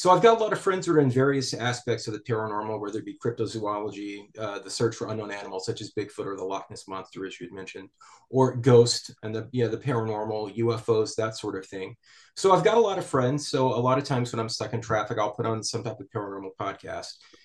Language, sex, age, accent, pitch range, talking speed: English, male, 30-49, American, 110-135 Hz, 255 wpm